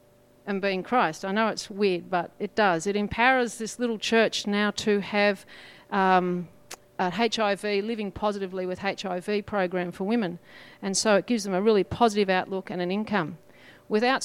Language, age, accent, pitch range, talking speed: English, 40-59, Australian, 180-220 Hz, 175 wpm